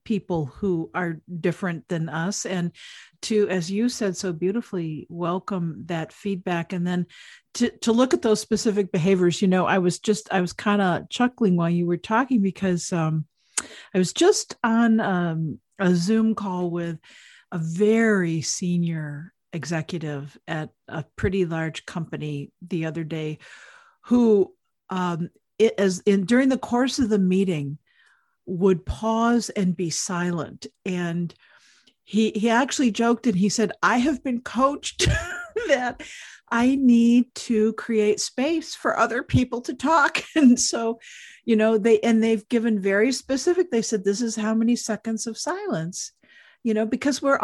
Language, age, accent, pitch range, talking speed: English, 50-69, American, 180-235 Hz, 155 wpm